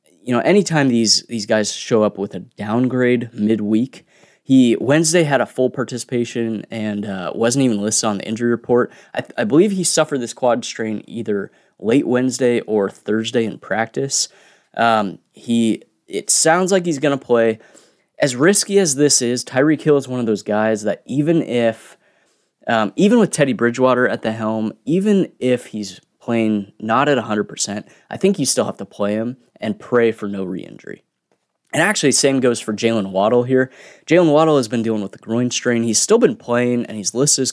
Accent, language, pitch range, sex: American, English, 110-145 Hz, male